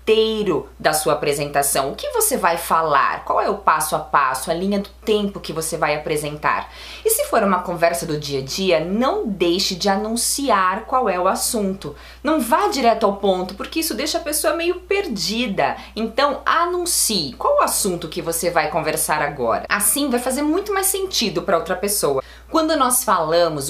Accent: Brazilian